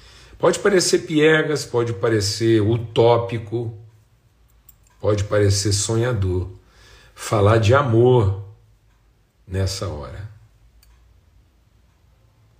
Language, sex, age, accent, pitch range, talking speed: Portuguese, male, 50-69, Brazilian, 100-125 Hz, 65 wpm